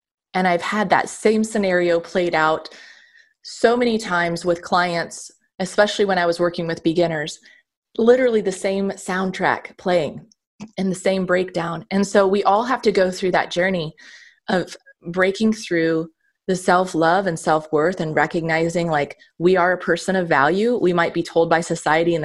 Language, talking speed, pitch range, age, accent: English, 165 wpm, 160-195 Hz, 20-39, American